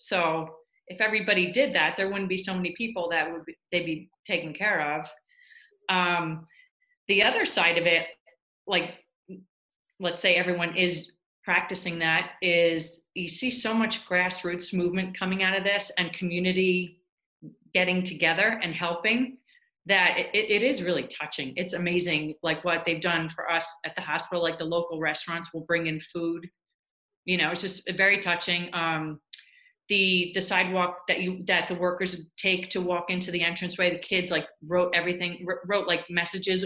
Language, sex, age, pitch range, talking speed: English, female, 30-49, 175-200 Hz, 170 wpm